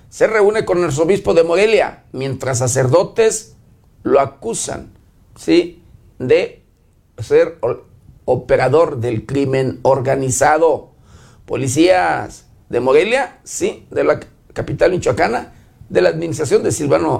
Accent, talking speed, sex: Mexican, 100 wpm, male